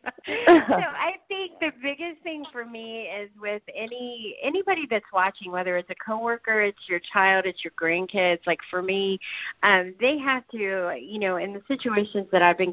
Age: 40-59